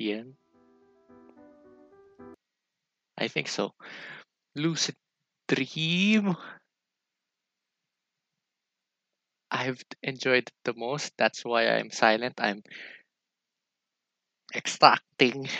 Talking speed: 60 wpm